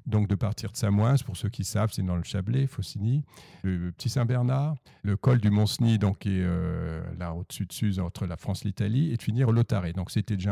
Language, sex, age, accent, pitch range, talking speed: French, male, 50-69, French, 100-125 Hz, 240 wpm